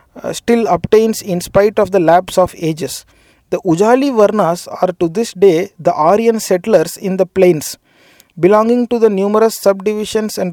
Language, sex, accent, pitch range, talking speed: Tamil, male, native, 175-205 Hz, 160 wpm